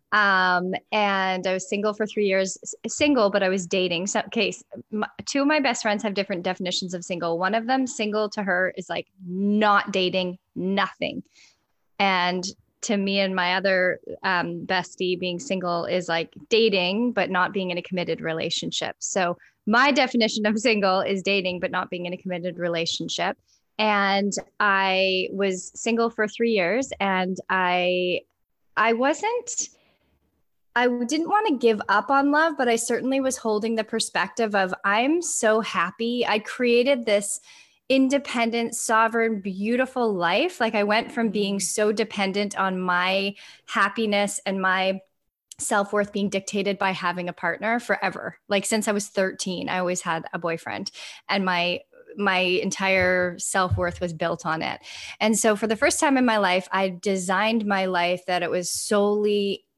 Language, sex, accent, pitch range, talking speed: English, female, American, 185-225 Hz, 165 wpm